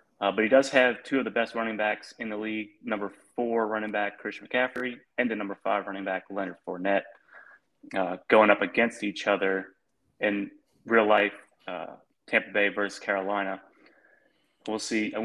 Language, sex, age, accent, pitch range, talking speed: English, male, 30-49, American, 100-115 Hz, 175 wpm